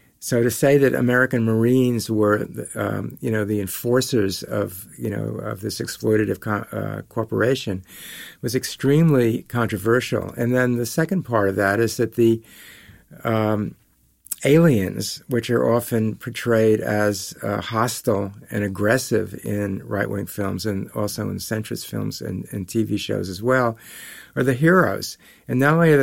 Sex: male